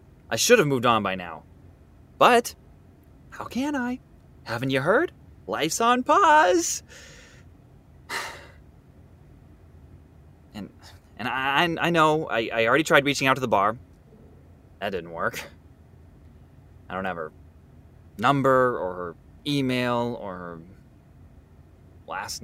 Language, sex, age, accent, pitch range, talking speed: English, male, 20-39, American, 85-145 Hz, 120 wpm